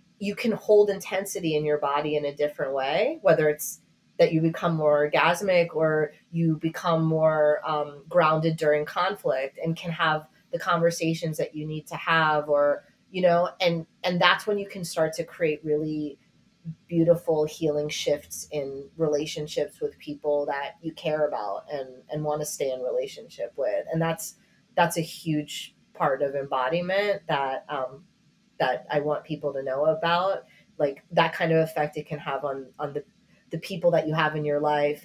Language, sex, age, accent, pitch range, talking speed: English, female, 30-49, American, 150-175 Hz, 175 wpm